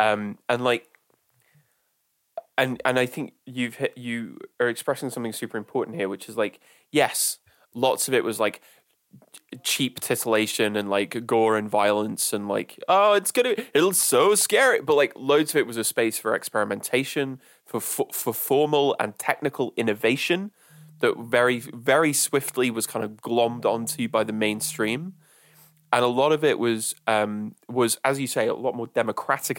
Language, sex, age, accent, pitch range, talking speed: English, male, 20-39, British, 115-155 Hz, 165 wpm